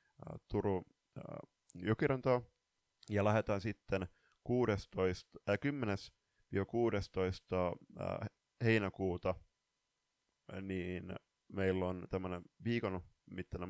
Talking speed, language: 70 wpm, Finnish